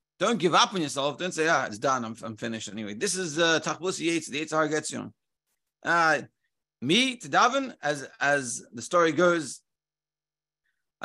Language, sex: English, male